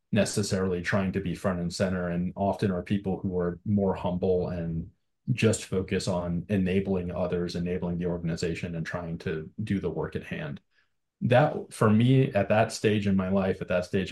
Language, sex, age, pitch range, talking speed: English, male, 30-49, 90-110 Hz, 185 wpm